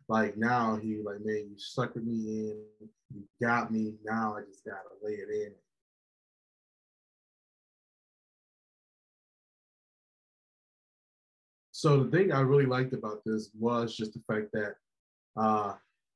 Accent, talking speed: American, 125 wpm